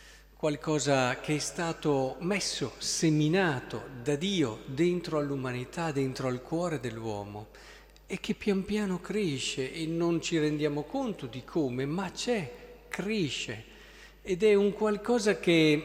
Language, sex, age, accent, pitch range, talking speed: Italian, male, 50-69, native, 135-180 Hz, 130 wpm